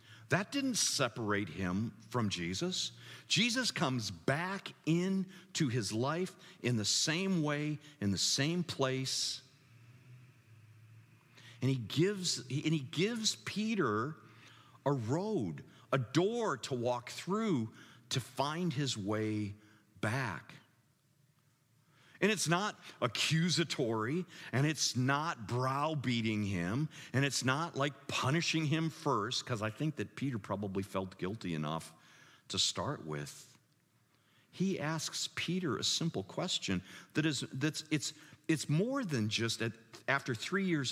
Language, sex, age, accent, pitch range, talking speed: English, male, 50-69, American, 115-160 Hz, 125 wpm